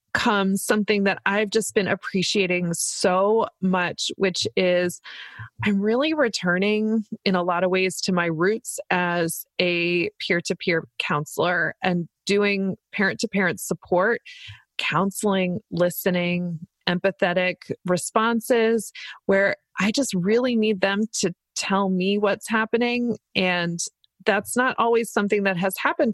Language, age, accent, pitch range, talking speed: English, 20-39, American, 175-205 Hz, 120 wpm